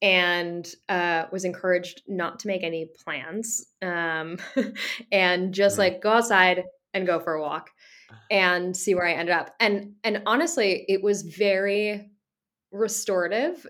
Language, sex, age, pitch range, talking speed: English, female, 20-39, 175-205 Hz, 145 wpm